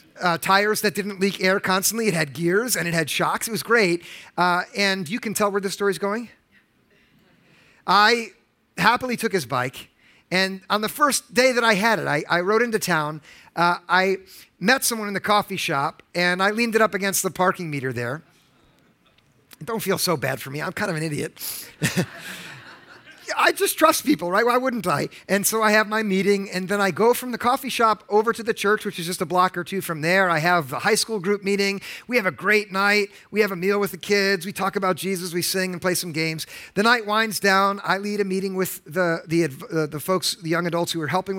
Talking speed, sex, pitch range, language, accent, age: 230 wpm, male, 175-215 Hz, English, American, 50-69